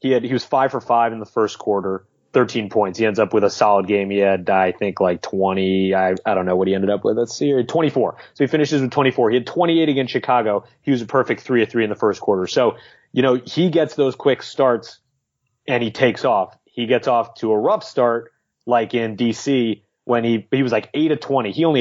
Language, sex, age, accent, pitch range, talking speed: English, male, 30-49, American, 105-130 Hz, 255 wpm